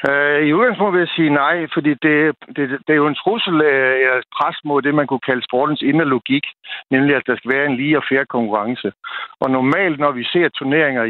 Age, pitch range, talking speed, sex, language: 60-79, 125-150 Hz, 220 wpm, male, Danish